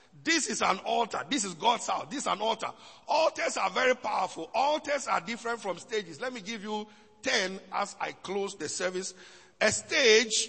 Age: 50-69